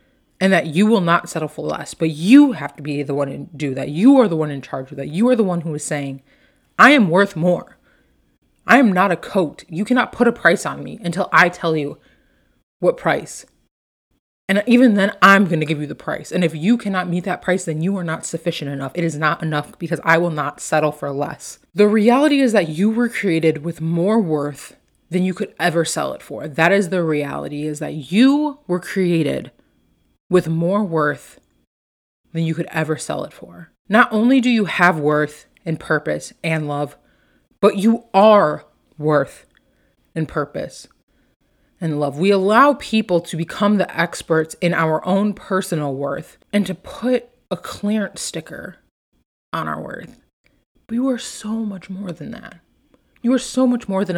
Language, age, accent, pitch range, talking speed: English, 20-39, American, 155-210 Hz, 195 wpm